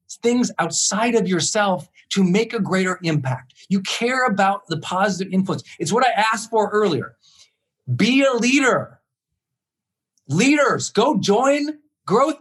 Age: 40-59